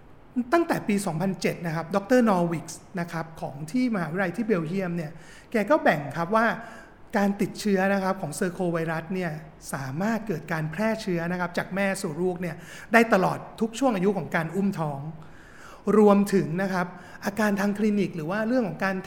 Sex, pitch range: male, 170-215 Hz